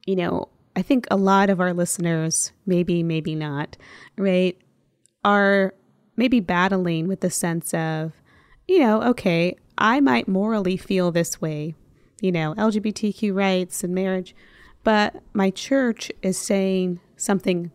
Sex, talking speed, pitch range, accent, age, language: female, 140 wpm, 175-215 Hz, American, 20-39, English